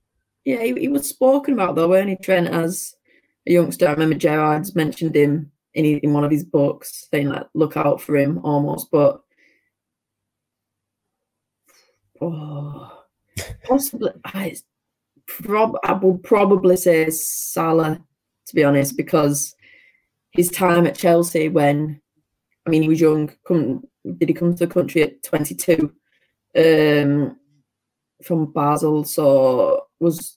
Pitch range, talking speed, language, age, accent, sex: 145-170 Hz, 135 wpm, English, 20-39, British, female